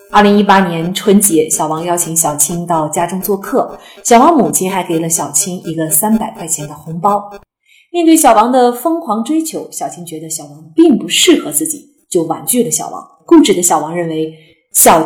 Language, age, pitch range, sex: Chinese, 30-49, 170-245 Hz, female